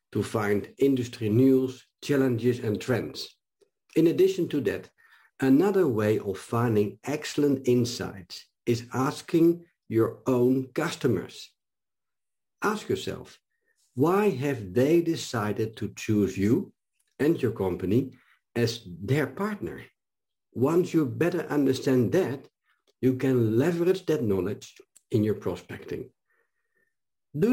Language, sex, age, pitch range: English, male, 50-69, 120-185 Hz